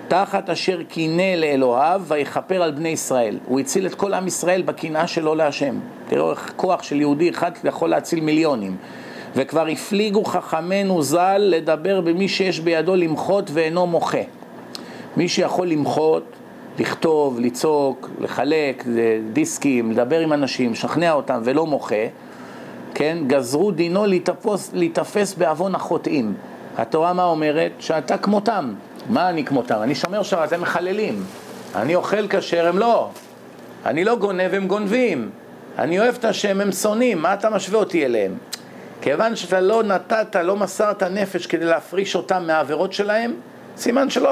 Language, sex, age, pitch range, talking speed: Hebrew, male, 50-69, 155-205 Hz, 145 wpm